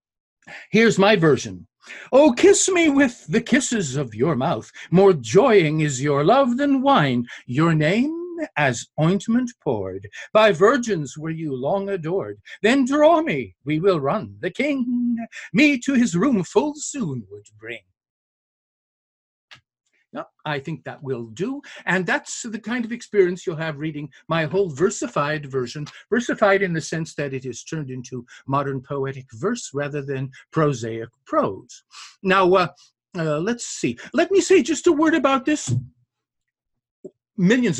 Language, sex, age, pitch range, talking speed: English, male, 50-69, 135-230 Hz, 150 wpm